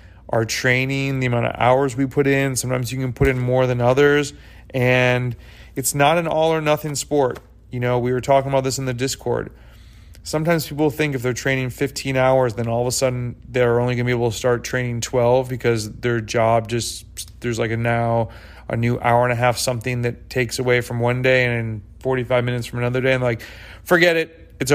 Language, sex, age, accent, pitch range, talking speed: English, male, 30-49, American, 120-140 Hz, 215 wpm